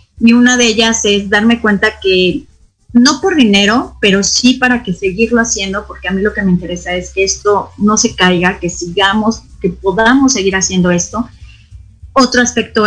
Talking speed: 180 wpm